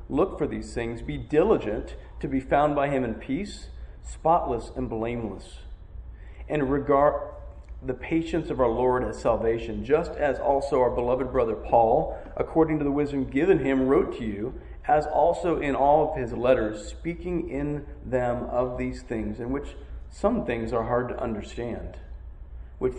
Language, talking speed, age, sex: English, 165 wpm, 40-59, male